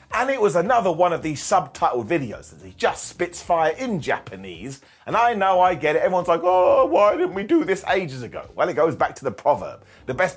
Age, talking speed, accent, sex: 30-49, 235 wpm, British, male